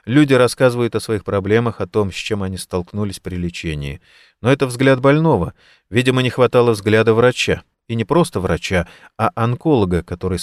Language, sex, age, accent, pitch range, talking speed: Russian, male, 30-49, native, 95-120 Hz, 165 wpm